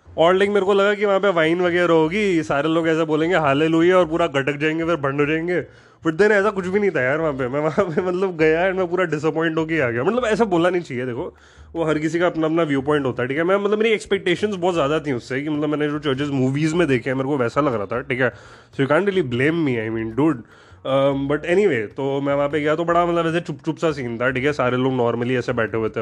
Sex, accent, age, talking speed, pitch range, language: male, native, 20-39, 265 wpm, 130-175 Hz, Hindi